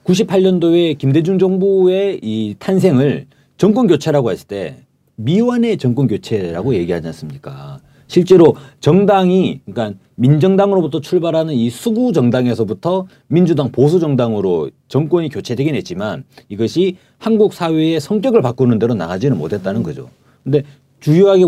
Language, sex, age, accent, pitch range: Korean, male, 40-59, native, 125-185 Hz